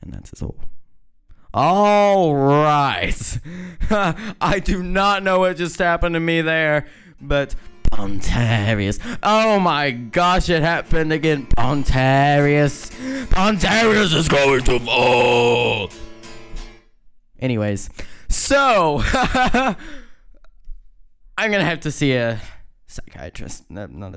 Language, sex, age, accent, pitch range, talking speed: English, male, 20-39, American, 100-145 Hz, 100 wpm